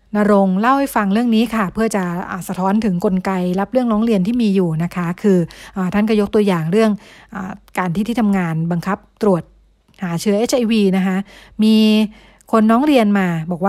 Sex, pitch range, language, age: female, 185-220 Hz, Thai, 60-79